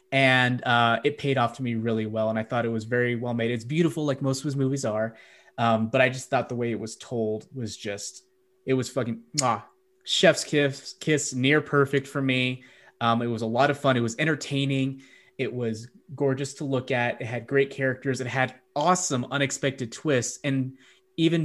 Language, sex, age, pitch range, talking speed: English, male, 20-39, 120-145 Hz, 215 wpm